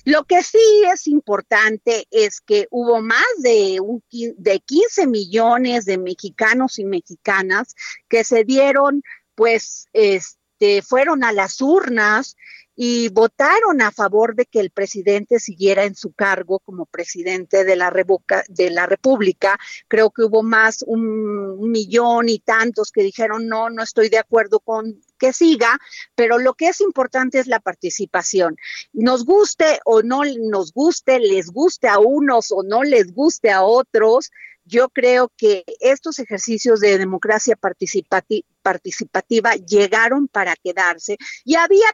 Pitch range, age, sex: 200-270 Hz, 40-59, female